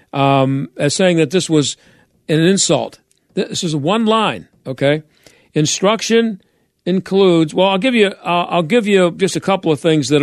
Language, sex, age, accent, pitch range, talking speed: English, male, 50-69, American, 140-175 Hz, 170 wpm